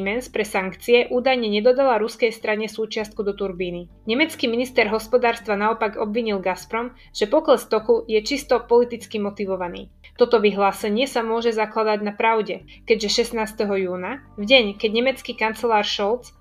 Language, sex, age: Slovak, female, 20-39